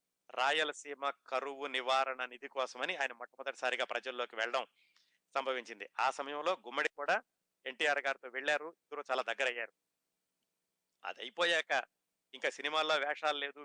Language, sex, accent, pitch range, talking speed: Telugu, male, native, 110-150 Hz, 120 wpm